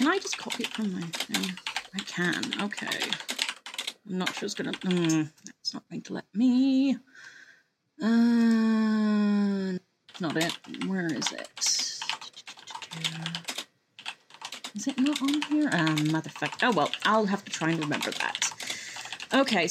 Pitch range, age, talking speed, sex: 175-230 Hz, 30-49, 145 wpm, female